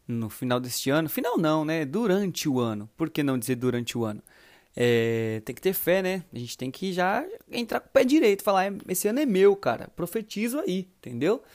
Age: 20-39